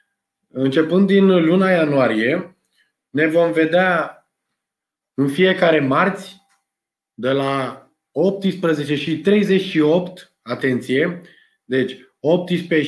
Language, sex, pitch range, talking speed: Romanian, male, 150-190 Hz, 85 wpm